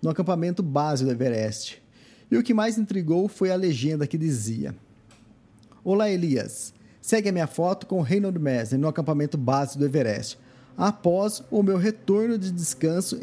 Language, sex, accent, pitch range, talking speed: Portuguese, male, Brazilian, 125-180 Hz, 160 wpm